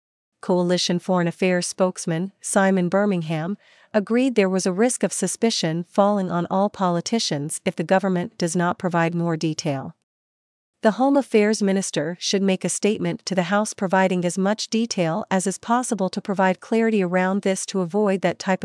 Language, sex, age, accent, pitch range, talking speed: English, female, 40-59, American, 175-210 Hz, 165 wpm